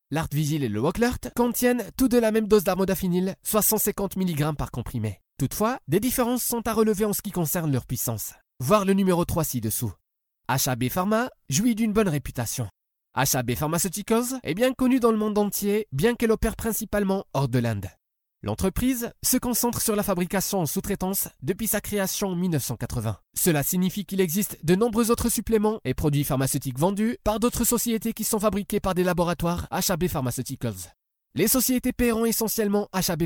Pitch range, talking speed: 145-220 Hz, 175 wpm